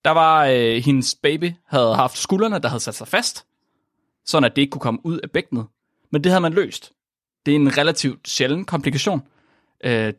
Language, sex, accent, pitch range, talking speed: Danish, male, native, 130-185 Hz, 205 wpm